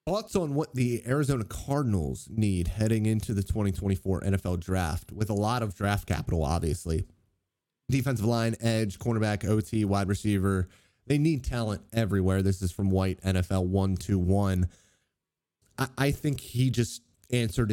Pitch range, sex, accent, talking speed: 95-120 Hz, male, American, 145 wpm